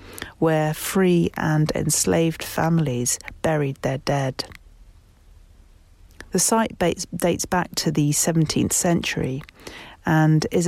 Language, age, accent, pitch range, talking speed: English, 40-59, British, 130-170 Hz, 100 wpm